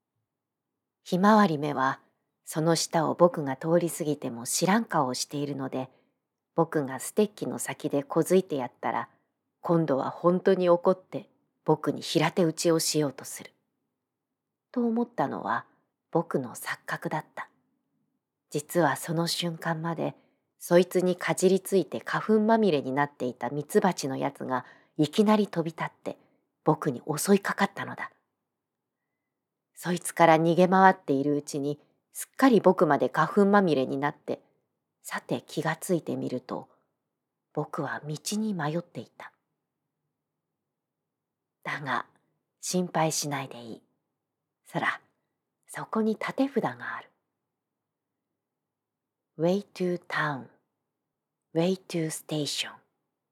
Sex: female